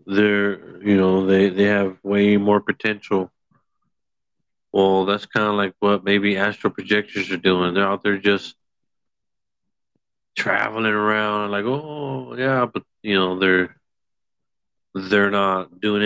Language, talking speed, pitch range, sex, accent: English, 135 wpm, 95-105 Hz, male, American